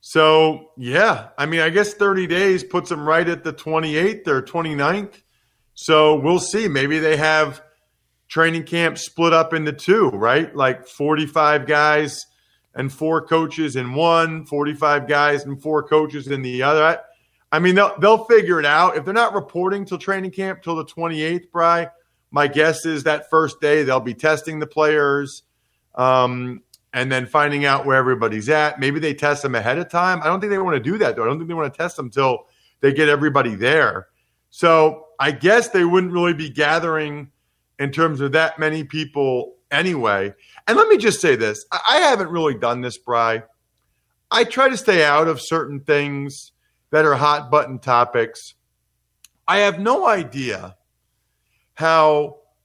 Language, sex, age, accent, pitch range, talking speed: English, male, 40-59, American, 140-165 Hz, 180 wpm